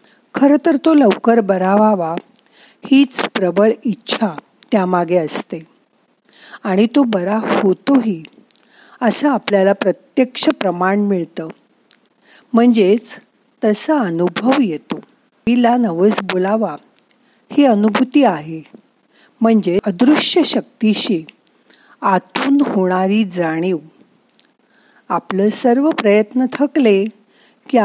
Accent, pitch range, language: native, 195-260 Hz, Marathi